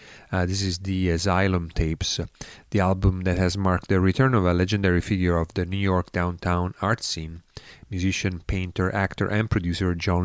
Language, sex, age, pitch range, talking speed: English, male, 30-49, 90-100 Hz, 175 wpm